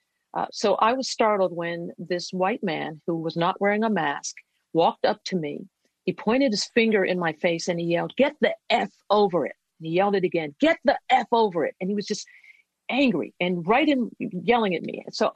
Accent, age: American, 50-69